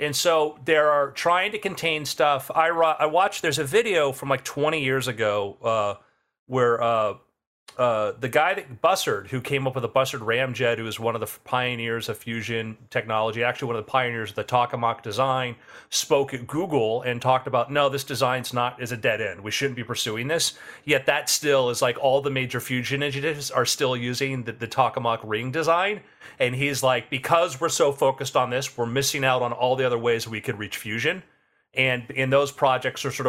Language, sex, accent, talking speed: English, male, American, 215 wpm